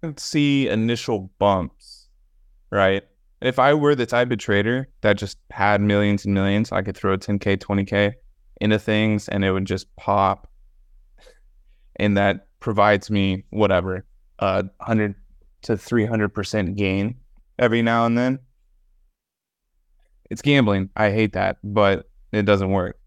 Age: 20-39